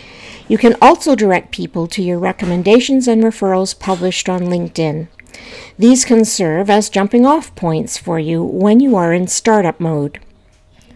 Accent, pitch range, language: American, 170-235 Hz, English